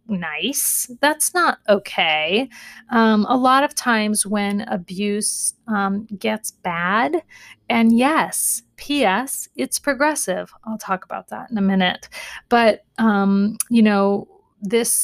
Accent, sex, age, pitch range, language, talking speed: American, female, 30-49, 205-245 Hz, English, 125 wpm